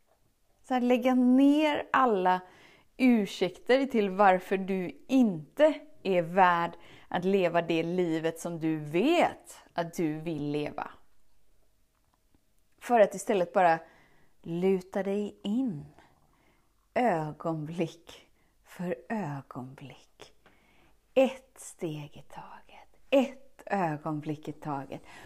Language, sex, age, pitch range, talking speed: Swedish, female, 30-49, 165-265 Hz, 95 wpm